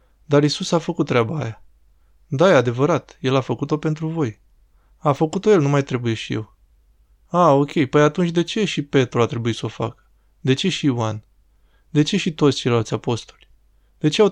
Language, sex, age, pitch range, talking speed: Romanian, male, 20-39, 120-155 Hz, 200 wpm